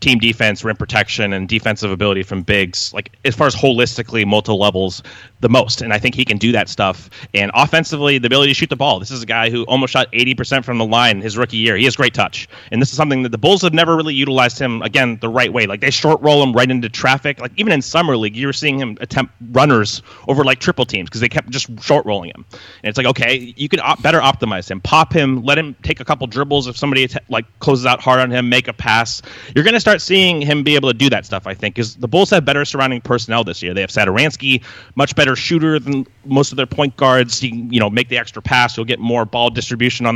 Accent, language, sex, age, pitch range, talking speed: American, English, male, 30-49, 115-145 Hz, 260 wpm